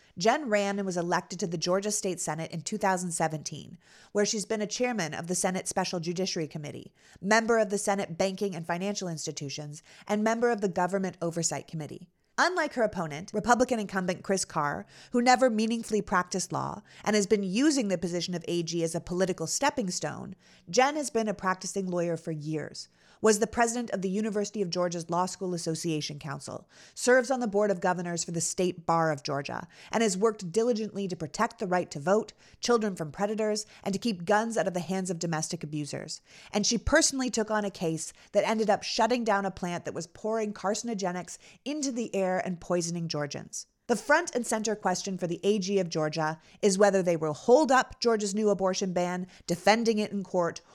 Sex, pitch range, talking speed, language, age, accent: female, 170-215 Hz, 195 wpm, English, 30-49, American